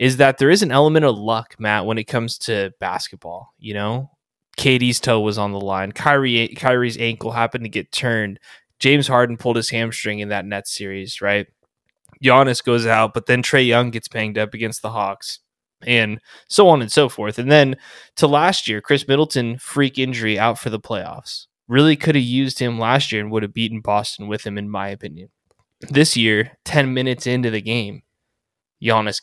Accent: American